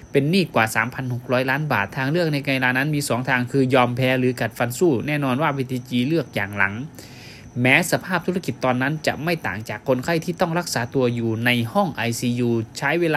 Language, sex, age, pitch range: Thai, male, 20-39, 120-150 Hz